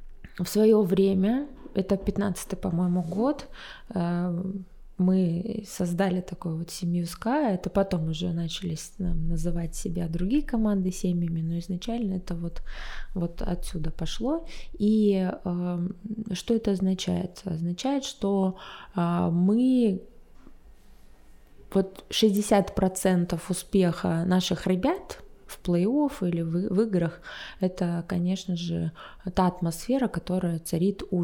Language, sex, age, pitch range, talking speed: Russian, female, 20-39, 170-205 Hz, 105 wpm